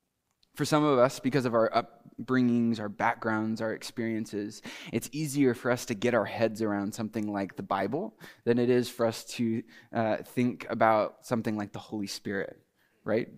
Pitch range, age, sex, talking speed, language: 110-130 Hz, 20-39, male, 180 wpm, English